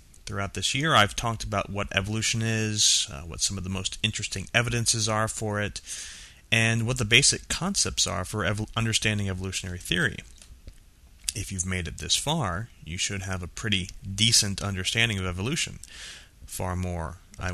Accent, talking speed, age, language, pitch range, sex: American, 165 wpm, 30-49, English, 95-115 Hz, male